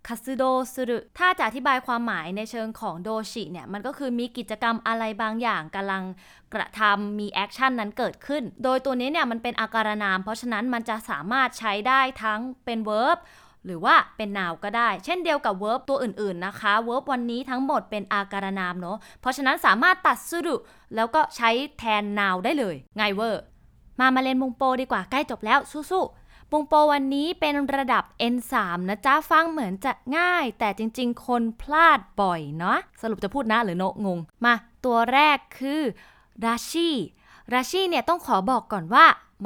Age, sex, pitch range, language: 20-39, female, 215-270 Hz, Thai